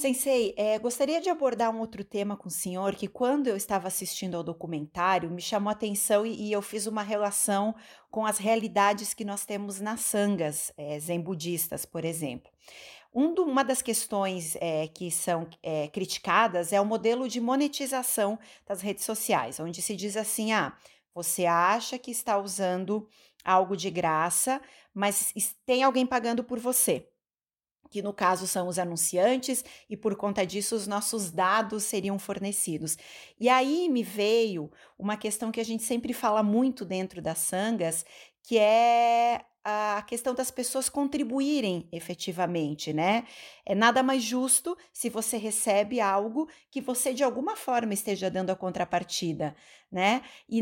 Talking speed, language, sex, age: 155 wpm, Portuguese, female, 30-49